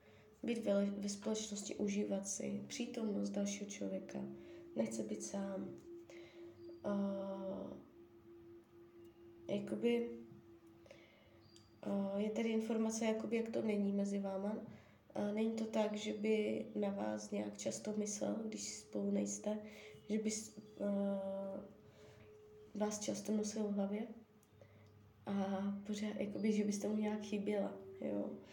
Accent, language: native, Czech